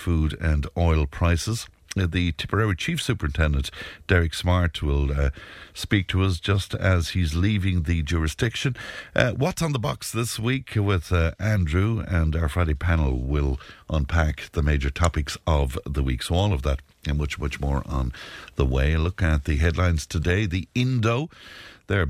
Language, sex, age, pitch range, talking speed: English, male, 60-79, 75-95 Hz, 170 wpm